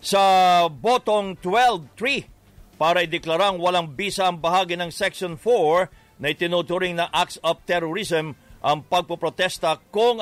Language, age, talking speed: English, 50-69, 125 wpm